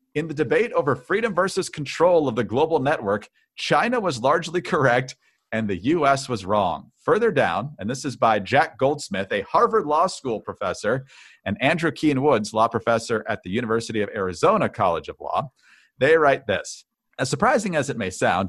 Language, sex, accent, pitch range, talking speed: English, male, American, 120-190 Hz, 180 wpm